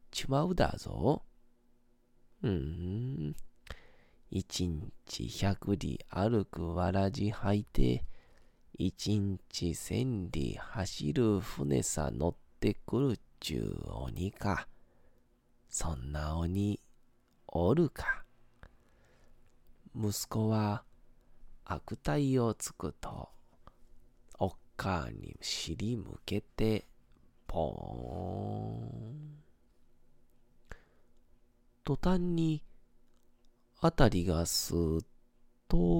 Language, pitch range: Japanese, 85-120 Hz